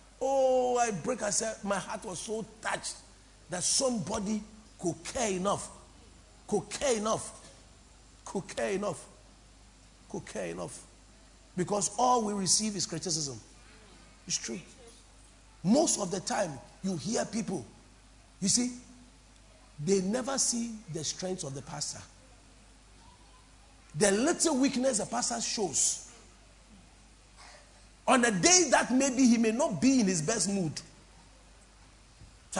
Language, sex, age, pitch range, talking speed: English, male, 50-69, 150-220 Hz, 125 wpm